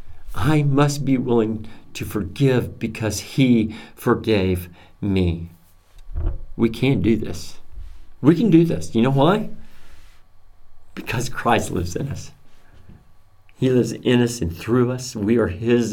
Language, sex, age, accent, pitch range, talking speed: English, male, 50-69, American, 90-135 Hz, 135 wpm